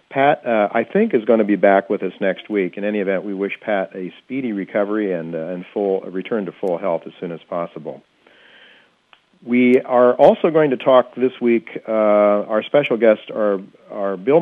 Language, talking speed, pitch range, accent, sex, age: English, 210 wpm, 100-120 Hz, American, male, 50-69